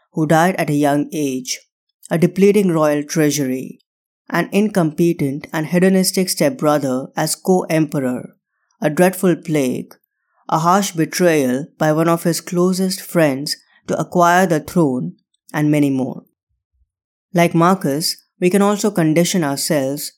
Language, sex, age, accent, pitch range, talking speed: English, female, 20-39, Indian, 150-185 Hz, 130 wpm